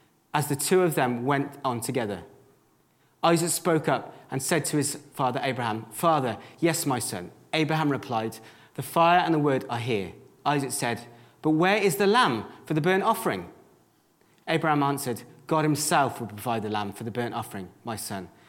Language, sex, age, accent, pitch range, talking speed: English, male, 30-49, British, 115-160 Hz, 180 wpm